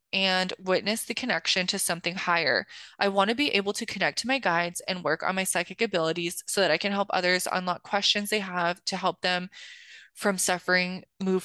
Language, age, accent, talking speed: English, 20-39, American, 205 wpm